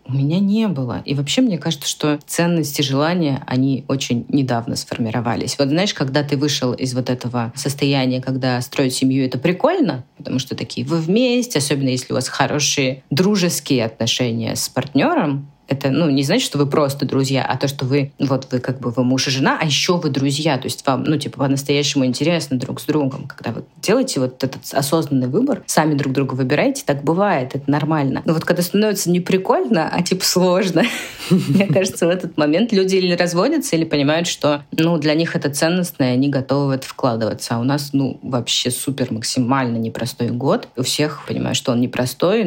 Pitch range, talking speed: 130-155 Hz, 190 wpm